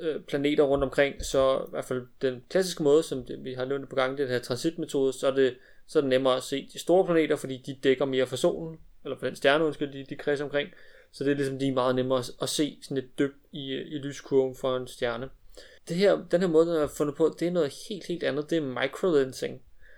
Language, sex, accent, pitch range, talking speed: Danish, male, native, 135-150 Hz, 245 wpm